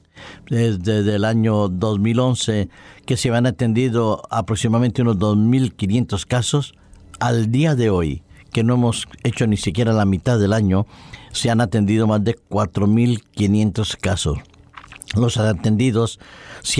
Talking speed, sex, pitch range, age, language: 130 wpm, male, 100-120 Hz, 50-69, Spanish